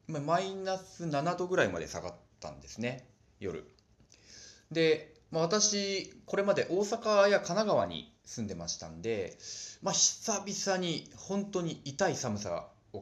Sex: male